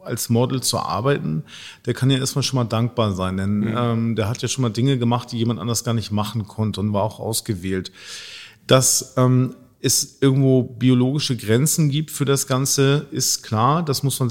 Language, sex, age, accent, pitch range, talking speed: German, male, 40-59, German, 115-130 Hz, 195 wpm